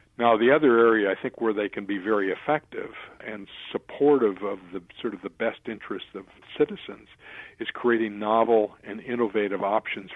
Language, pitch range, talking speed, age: English, 105-120 Hz, 170 wpm, 50-69